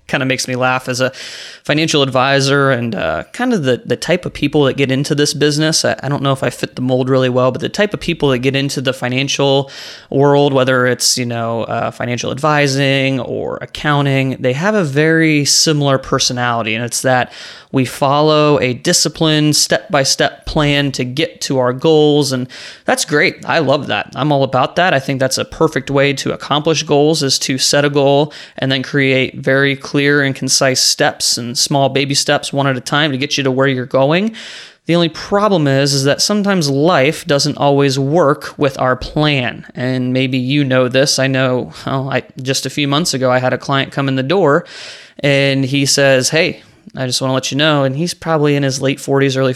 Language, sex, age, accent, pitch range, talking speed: English, male, 20-39, American, 130-150 Hz, 215 wpm